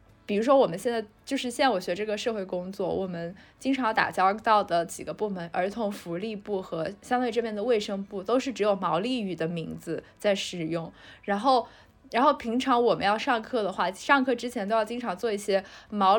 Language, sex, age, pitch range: Chinese, female, 10-29, 195-250 Hz